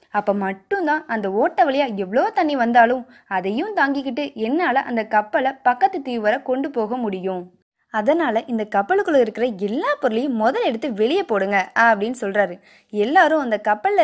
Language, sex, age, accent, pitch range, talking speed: Tamil, female, 20-39, native, 210-295 Hz, 140 wpm